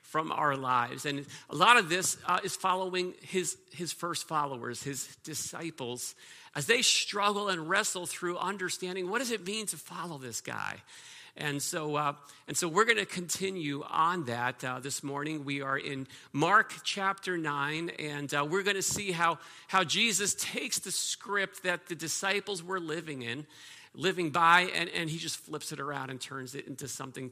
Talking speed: 185 wpm